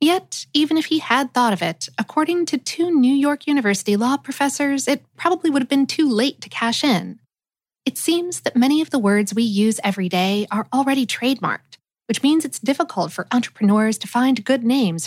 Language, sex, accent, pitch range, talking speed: English, female, American, 195-275 Hz, 200 wpm